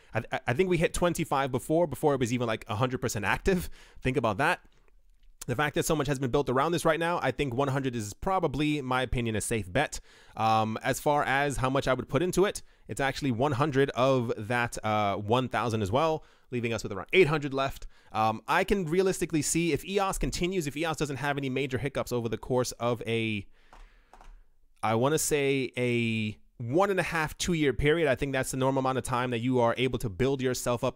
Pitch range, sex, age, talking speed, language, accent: 120-150 Hz, male, 30-49, 215 wpm, English, American